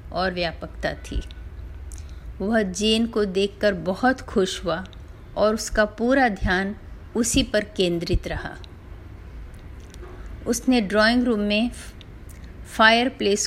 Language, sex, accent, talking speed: Hindi, female, native, 100 wpm